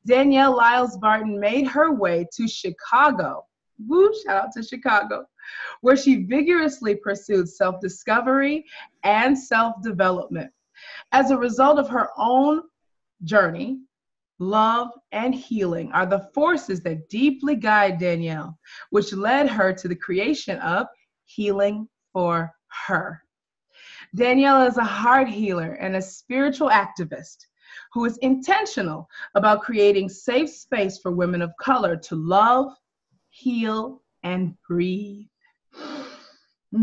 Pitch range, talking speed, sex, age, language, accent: 185-265 Hz, 115 wpm, female, 20-39, English, American